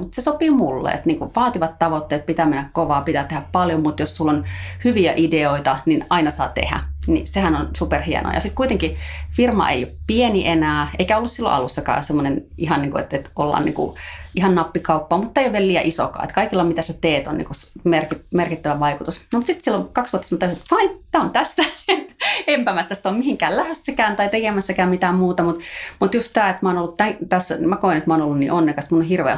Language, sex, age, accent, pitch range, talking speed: Finnish, female, 30-49, native, 150-190 Hz, 200 wpm